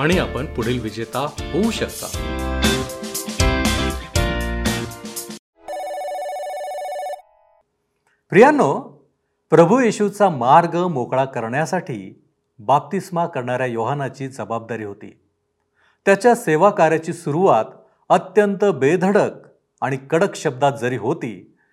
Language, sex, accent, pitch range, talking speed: Marathi, male, native, 120-180 Hz, 75 wpm